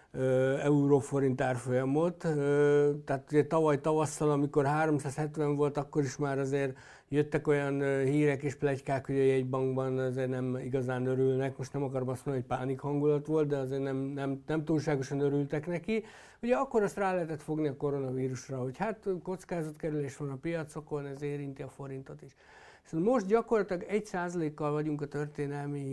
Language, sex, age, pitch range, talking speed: Hungarian, male, 60-79, 140-160 Hz, 160 wpm